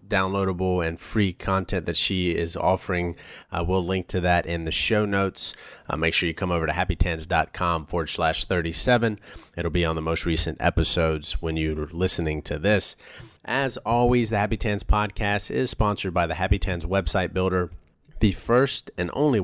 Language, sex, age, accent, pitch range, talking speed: English, male, 30-49, American, 85-100 Hz, 180 wpm